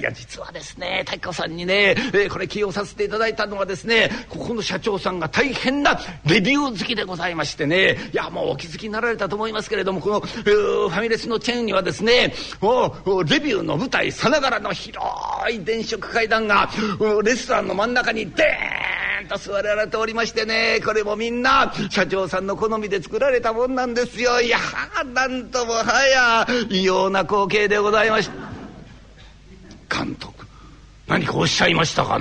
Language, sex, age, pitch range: Japanese, male, 50-69, 190-235 Hz